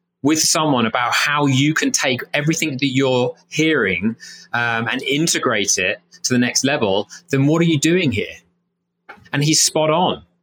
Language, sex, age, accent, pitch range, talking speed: English, male, 30-49, British, 120-155 Hz, 165 wpm